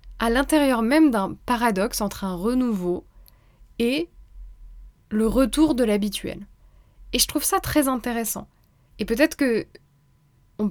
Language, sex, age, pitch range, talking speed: French, female, 20-39, 200-245 Hz, 125 wpm